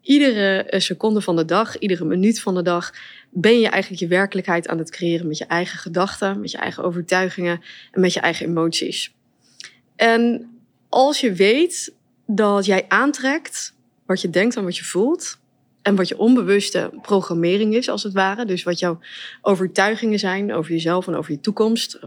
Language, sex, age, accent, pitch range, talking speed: Dutch, female, 20-39, Dutch, 175-225 Hz, 175 wpm